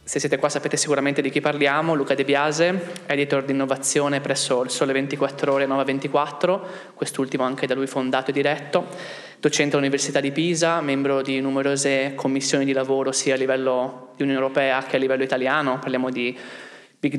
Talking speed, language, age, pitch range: 180 wpm, Italian, 20-39, 130-150 Hz